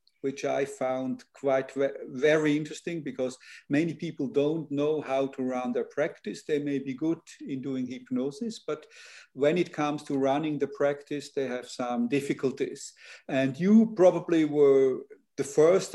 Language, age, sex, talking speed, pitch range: English, 50-69, male, 155 wpm, 135-170 Hz